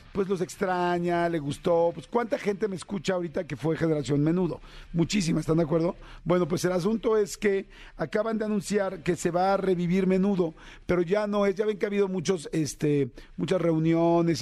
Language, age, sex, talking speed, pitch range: Spanish, 50-69, male, 195 wpm, 165-200 Hz